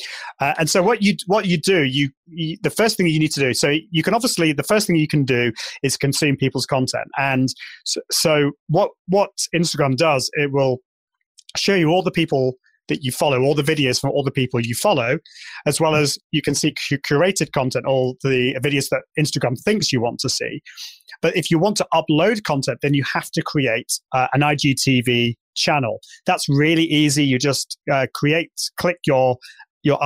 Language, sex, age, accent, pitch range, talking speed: English, male, 30-49, British, 135-165 Hz, 200 wpm